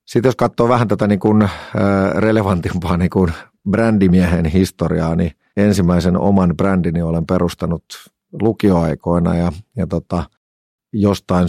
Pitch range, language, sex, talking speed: 85-95 Hz, Finnish, male, 120 wpm